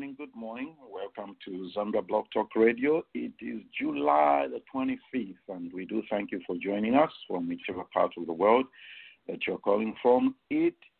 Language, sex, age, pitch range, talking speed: English, male, 50-69, 105-135 Hz, 185 wpm